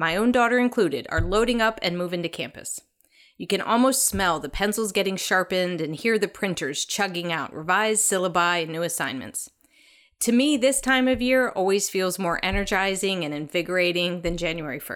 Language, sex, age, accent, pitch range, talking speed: English, female, 30-49, American, 175-245 Hz, 175 wpm